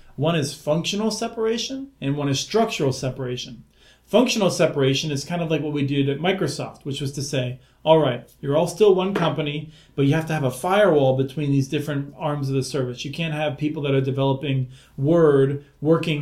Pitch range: 135-155 Hz